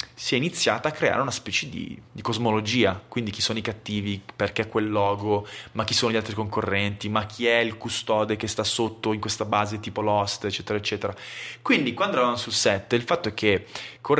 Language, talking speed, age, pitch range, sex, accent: Italian, 210 wpm, 20-39, 105-120 Hz, male, native